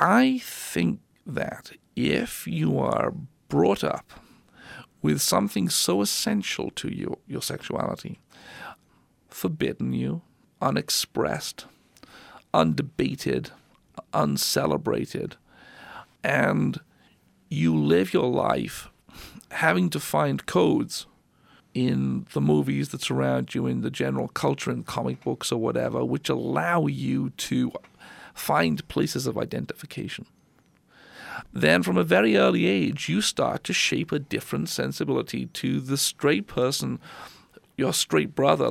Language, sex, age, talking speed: English, male, 50-69, 110 wpm